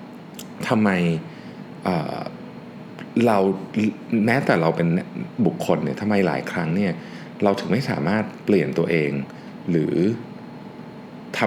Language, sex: Thai, male